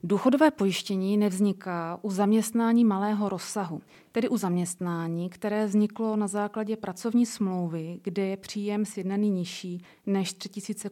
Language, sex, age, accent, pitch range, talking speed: Czech, female, 30-49, native, 180-210 Hz, 125 wpm